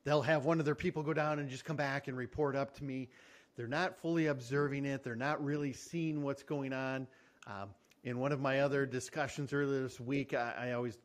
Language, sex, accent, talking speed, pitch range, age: English, male, American, 230 wpm, 130-155 Hz, 50-69